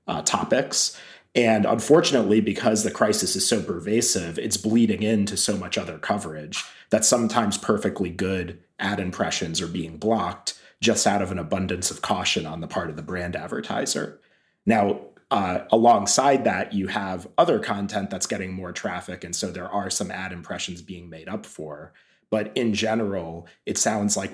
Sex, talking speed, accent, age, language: male, 170 wpm, American, 30-49, English